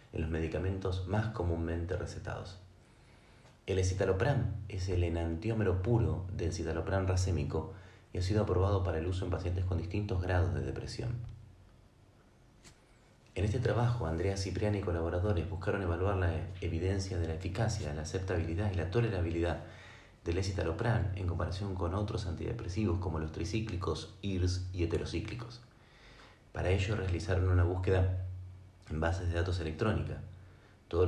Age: 30-49